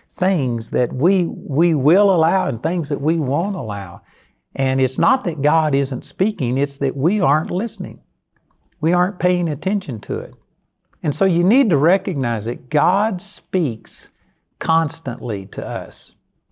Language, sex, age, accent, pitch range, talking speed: English, male, 60-79, American, 120-160 Hz, 155 wpm